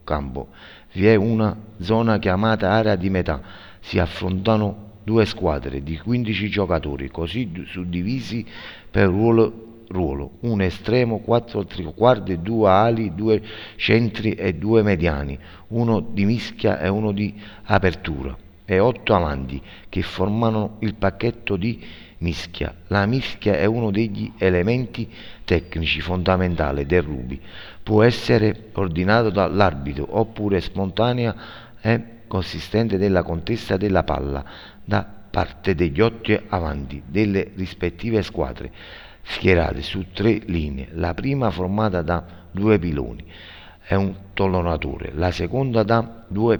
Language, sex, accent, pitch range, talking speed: Italian, male, native, 85-110 Hz, 120 wpm